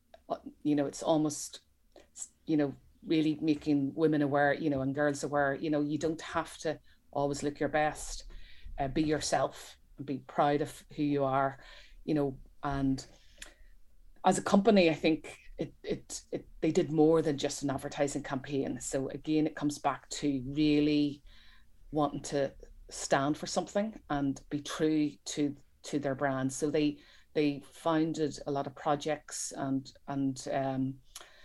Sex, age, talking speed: female, 30-49, 160 wpm